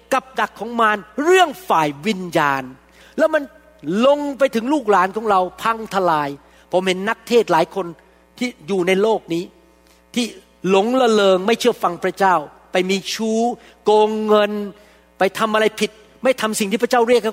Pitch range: 175-235 Hz